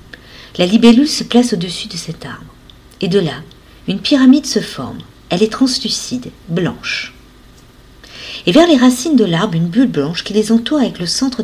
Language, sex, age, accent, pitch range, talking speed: French, female, 50-69, French, 170-245 Hz, 180 wpm